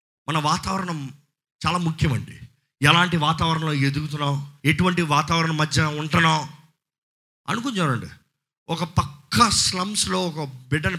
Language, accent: Telugu, native